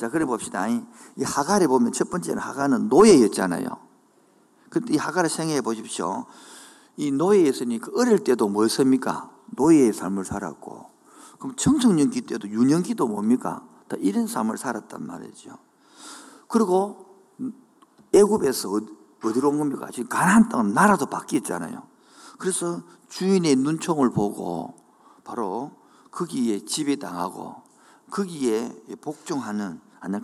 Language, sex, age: Korean, male, 50-69